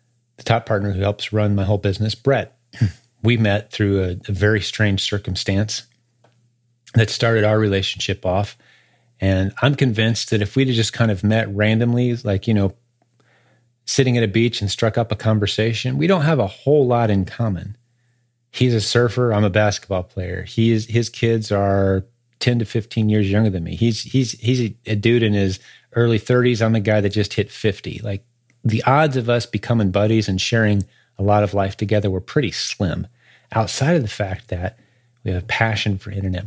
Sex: male